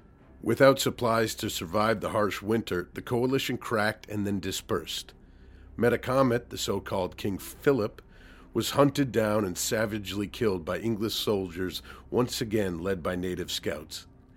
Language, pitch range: English, 95-120 Hz